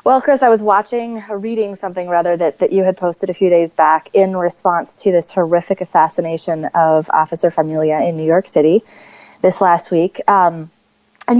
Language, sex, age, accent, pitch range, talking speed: English, female, 30-49, American, 165-215 Hz, 185 wpm